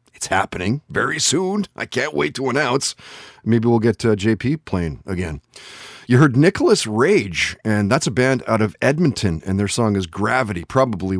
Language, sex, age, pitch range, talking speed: English, male, 30-49, 95-130 Hz, 170 wpm